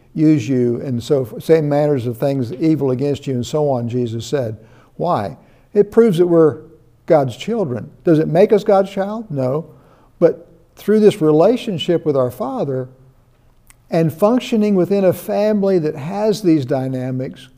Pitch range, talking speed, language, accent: 145-185 Hz, 155 wpm, English, American